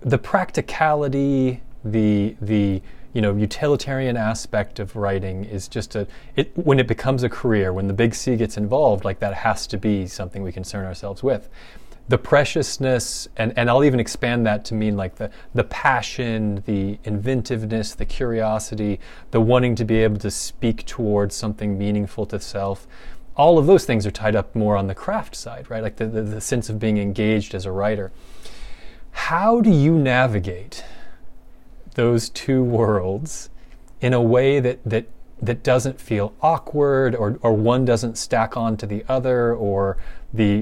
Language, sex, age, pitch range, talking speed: English, male, 30-49, 105-125 Hz, 170 wpm